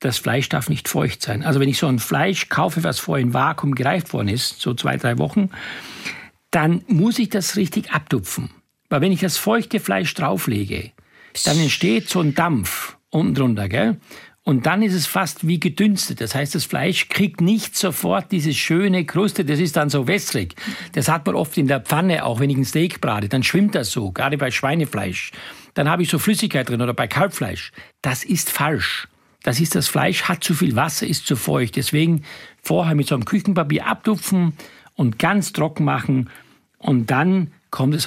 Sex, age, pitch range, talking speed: male, 60-79, 135-190 Hz, 195 wpm